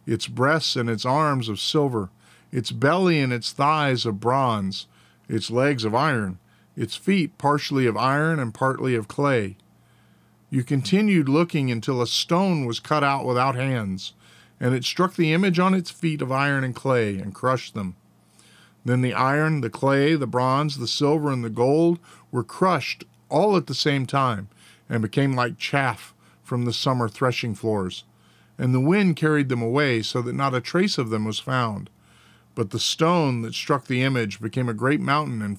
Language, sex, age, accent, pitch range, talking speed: English, male, 50-69, American, 115-150 Hz, 180 wpm